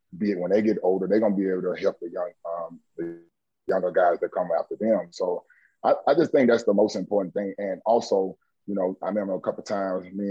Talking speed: 250 wpm